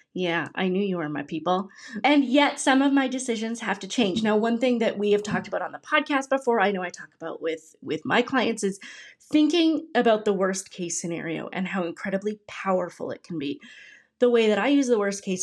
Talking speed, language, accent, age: 230 wpm, English, American, 30-49